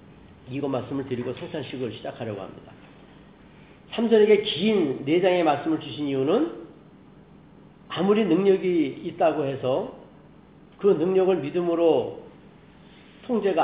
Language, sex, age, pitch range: Korean, male, 40-59, 145-215 Hz